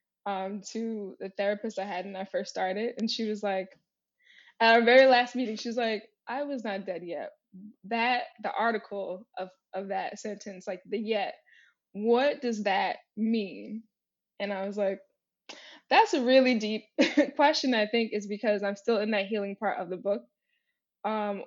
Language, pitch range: English, 195-230 Hz